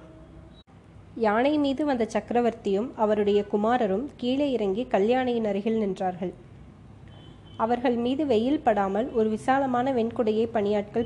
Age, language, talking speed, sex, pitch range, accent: 20-39, Tamil, 105 wpm, female, 195-240 Hz, native